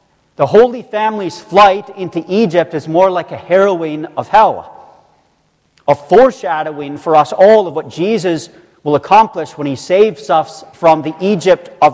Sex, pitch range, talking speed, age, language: male, 155-205 Hz, 155 wpm, 40-59, English